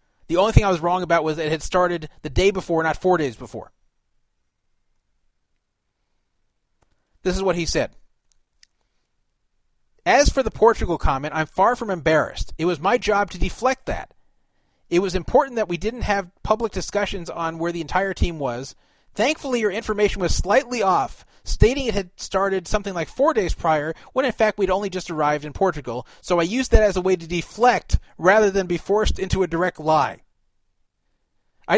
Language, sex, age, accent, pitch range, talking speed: English, male, 30-49, American, 160-210 Hz, 185 wpm